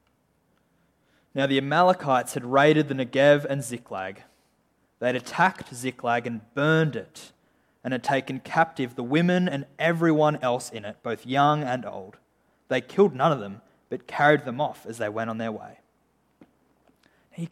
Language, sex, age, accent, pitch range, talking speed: English, male, 20-39, Australian, 125-165 Hz, 160 wpm